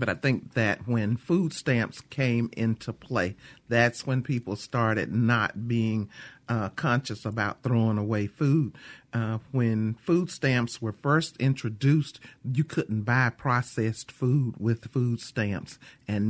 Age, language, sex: 50-69, English, male